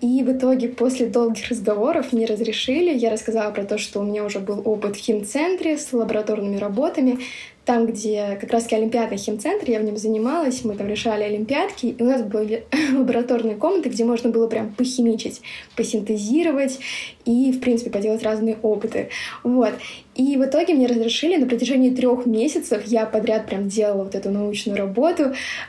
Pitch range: 225-260 Hz